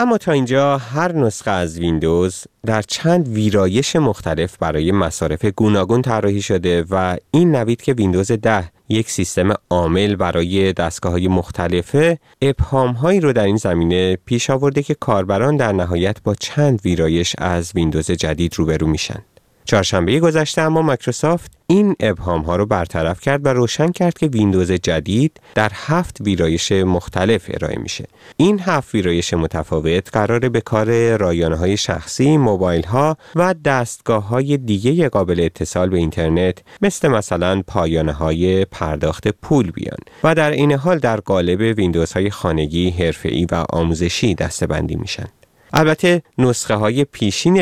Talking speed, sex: 145 wpm, male